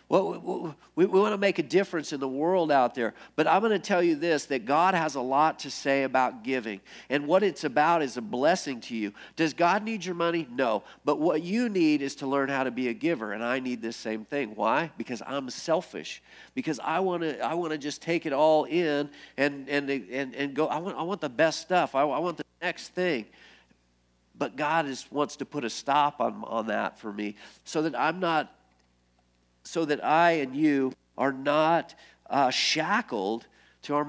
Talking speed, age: 220 wpm, 50-69